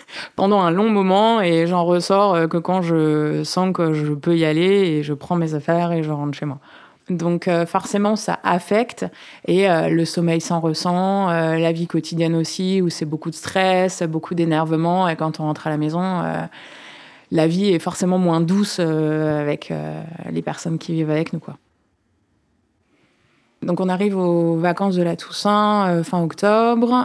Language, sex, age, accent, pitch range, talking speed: French, female, 20-39, French, 160-190 Hz, 185 wpm